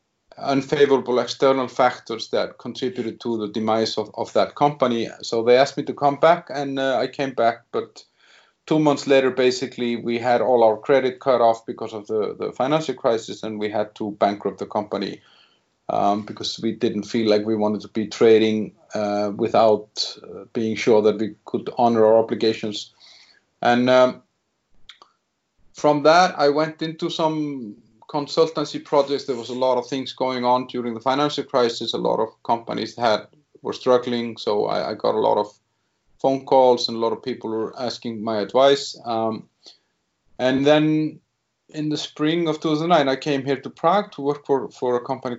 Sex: male